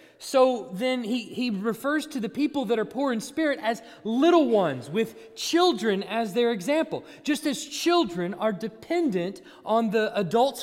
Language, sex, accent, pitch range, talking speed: English, male, American, 170-240 Hz, 165 wpm